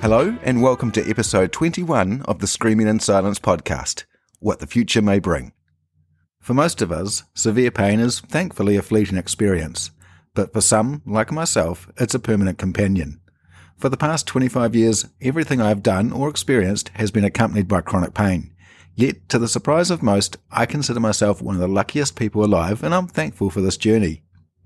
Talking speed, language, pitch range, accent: 180 wpm, English, 90-115 Hz, Australian